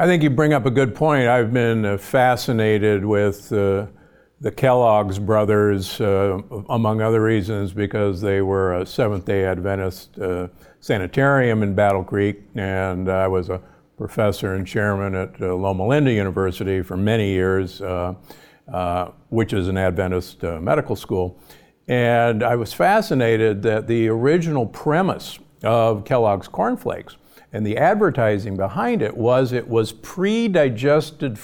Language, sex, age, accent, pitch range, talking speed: English, male, 50-69, American, 100-130 Hz, 145 wpm